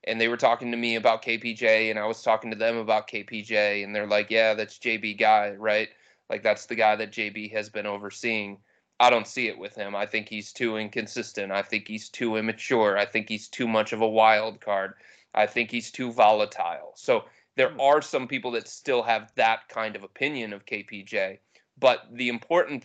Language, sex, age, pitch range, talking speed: English, male, 20-39, 105-115 Hz, 210 wpm